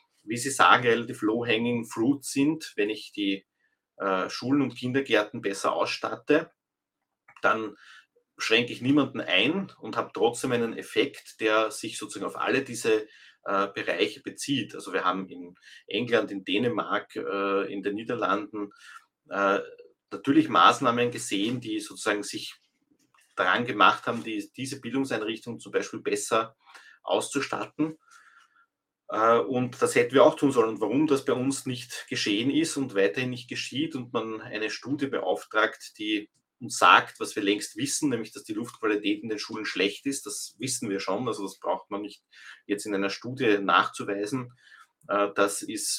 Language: English